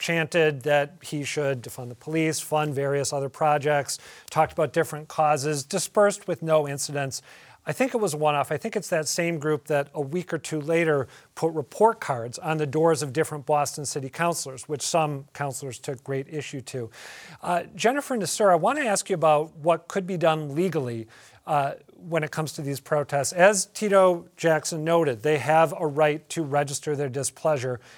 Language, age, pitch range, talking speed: English, 40-59, 140-170 Hz, 185 wpm